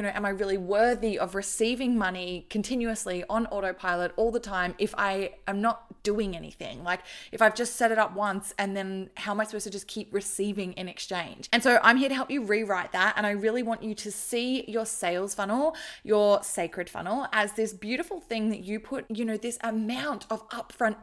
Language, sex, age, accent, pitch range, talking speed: English, female, 20-39, Australian, 195-230 Hz, 215 wpm